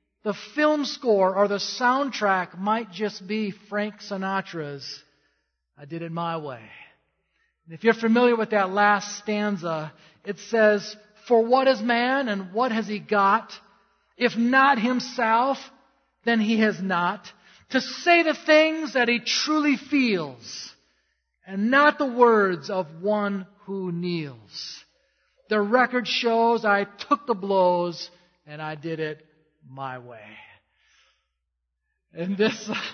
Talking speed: 130 wpm